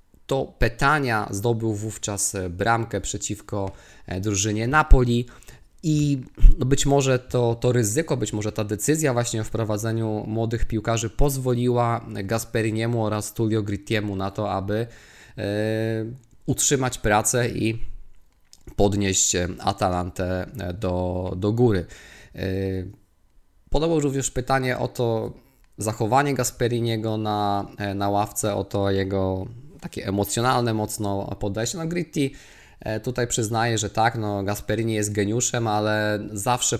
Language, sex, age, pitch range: Polish, male, 20-39, 100-120 Hz